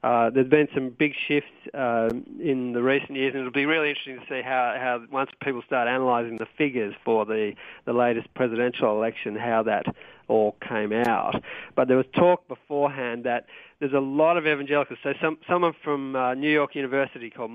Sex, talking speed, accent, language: male, 195 wpm, Australian, English